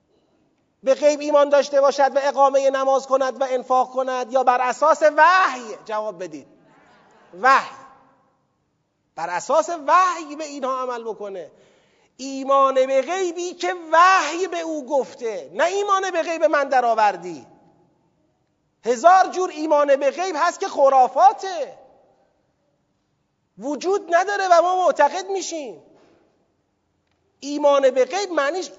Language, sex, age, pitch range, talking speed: Persian, male, 40-59, 265-335 Hz, 120 wpm